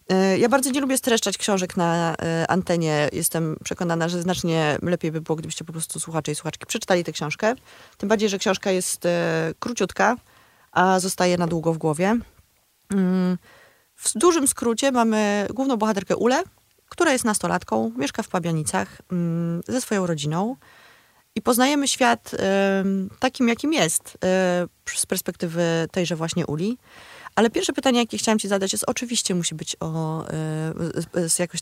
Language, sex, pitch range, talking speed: Polish, female, 170-220 Hz, 140 wpm